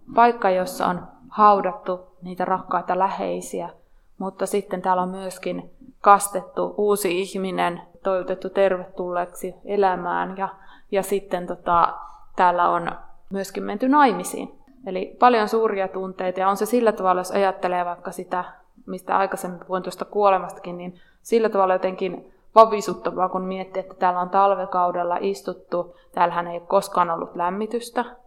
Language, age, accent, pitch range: Finnish, 20-39, native, 180-200 Hz